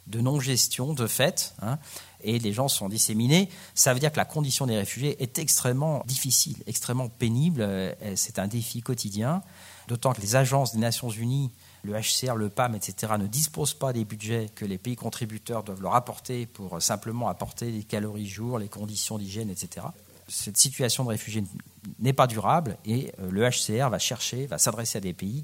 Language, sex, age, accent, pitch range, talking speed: French, male, 50-69, French, 105-135 Hz, 185 wpm